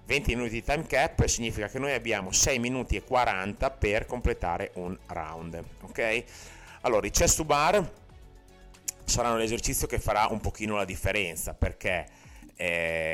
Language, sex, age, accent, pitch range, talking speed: Italian, male, 30-49, native, 90-115 Hz, 150 wpm